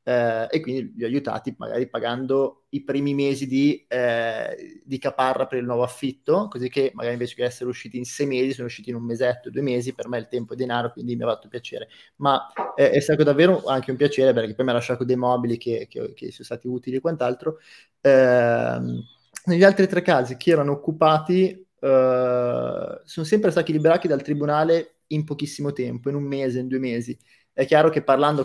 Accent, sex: native, male